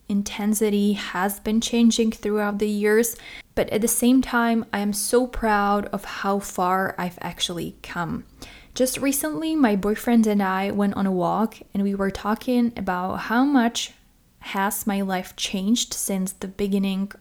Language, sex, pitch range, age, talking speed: English, female, 195-230 Hz, 20-39, 160 wpm